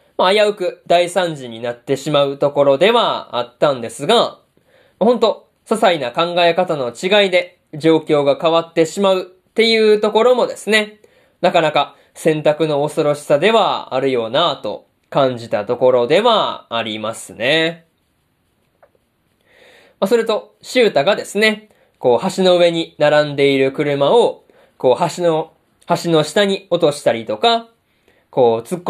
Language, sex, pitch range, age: Japanese, male, 145-200 Hz, 20-39